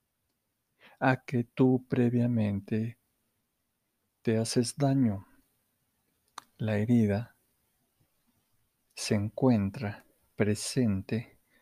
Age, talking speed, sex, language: 50-69, 60 wpm, male, Spanish